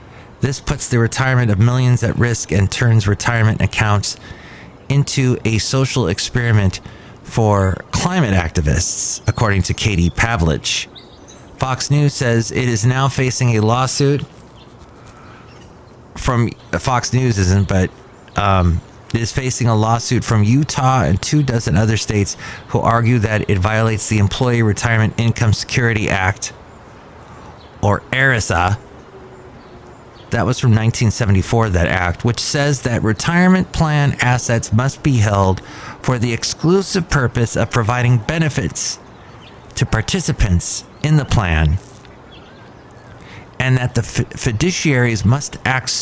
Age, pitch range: 30-49, 100-130 Hz